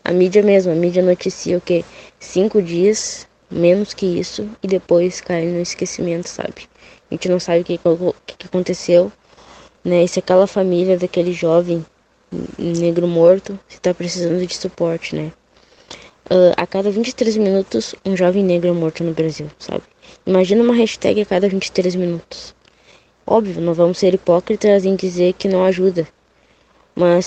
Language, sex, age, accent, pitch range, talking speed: English, female, 20-39, Brazilian, 170-190 Hz, 160 wpm